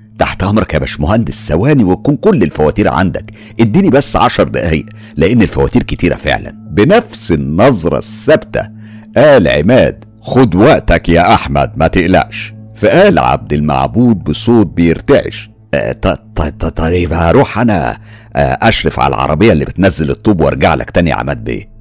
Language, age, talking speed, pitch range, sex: Arabic, 60-79, 125 wpm, 90-110 Hz, male